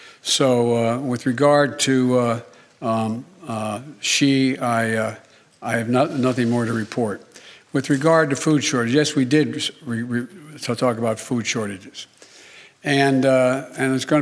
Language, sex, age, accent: English, male, 60-79, American